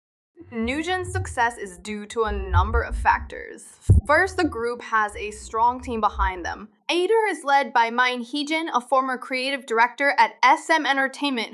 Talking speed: 160 wpm